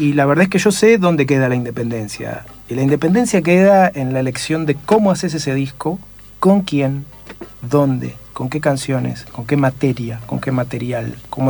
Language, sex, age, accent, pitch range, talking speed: Spanish, male, 50-69, Argentinian, 130-185 Hz, 190 wpm